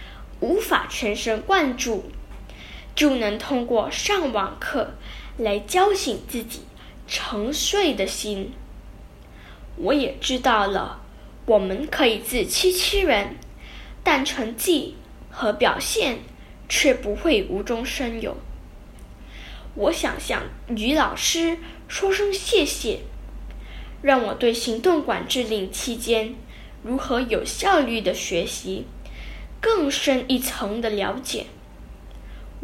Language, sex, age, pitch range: Chinese, female, 10-29, 225-335 Hz